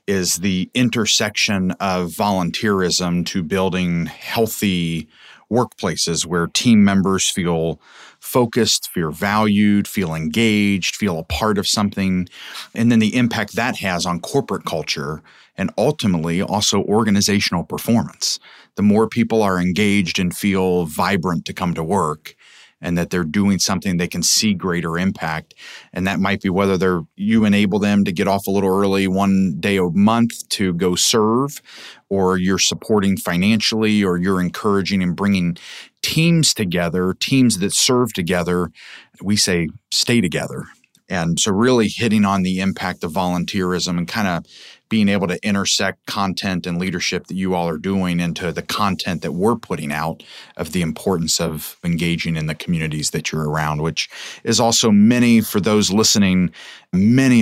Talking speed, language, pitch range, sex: 155 wpm, English, 90-105 Hz, male